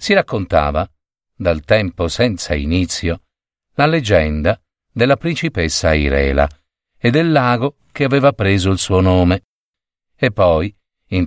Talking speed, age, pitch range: 120 wpm, 50-69, 85-145 Hz